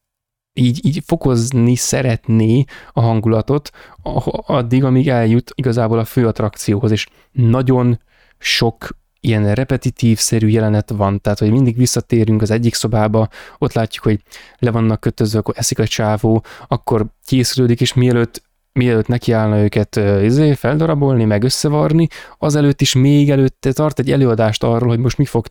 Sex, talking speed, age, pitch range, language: male, 140 wpm, 20-39, 110-130 Hz, Hungarian